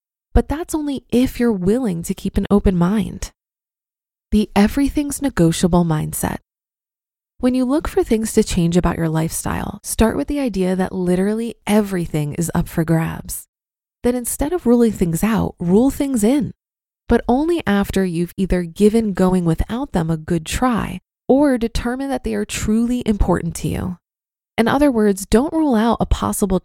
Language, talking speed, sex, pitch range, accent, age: English, 165 wpm, female, 180-245 Hz, American, 20-39